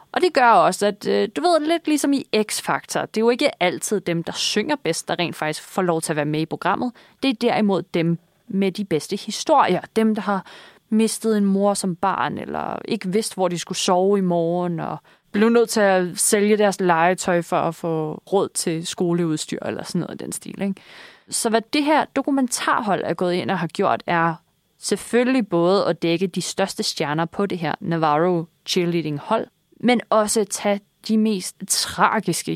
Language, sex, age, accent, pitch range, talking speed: Danish, female, 30-49, native, 175-225 Hz, 195 wpm